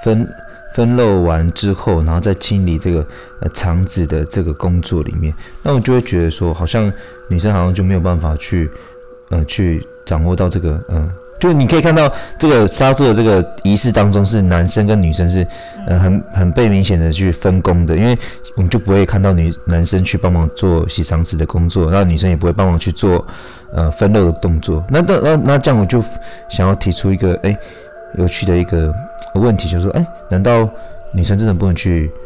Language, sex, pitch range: Chinese, male, 85-105 Hz